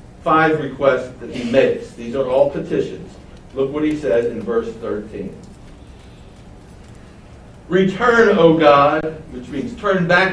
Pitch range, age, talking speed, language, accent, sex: 135-175 Hz, 60-79, 135 wpm, English, American, male